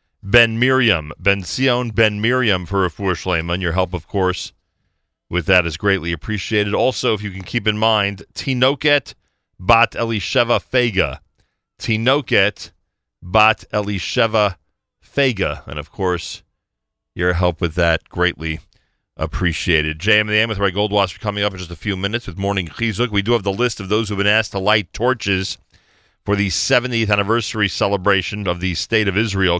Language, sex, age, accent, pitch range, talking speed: English, male, 40-59, American, 90-115 Hz, 160 wpm